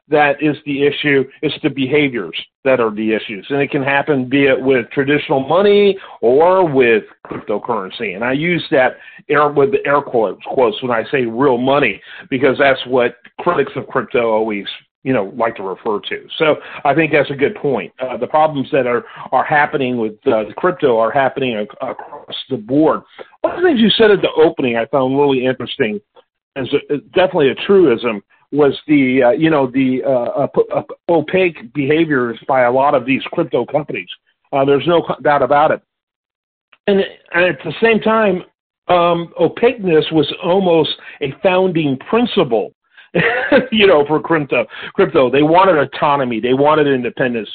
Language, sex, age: English, male, 50-69